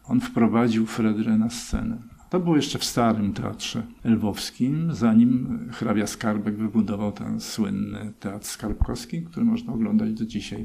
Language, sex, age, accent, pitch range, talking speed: Polish, male, 50-69, native, 110-125 Hz, 140 wpm